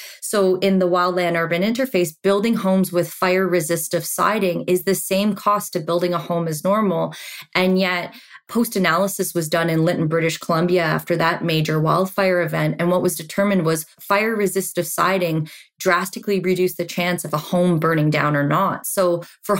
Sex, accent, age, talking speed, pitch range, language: female, American, 20-39, 170 wpm, 170-195 Hz, English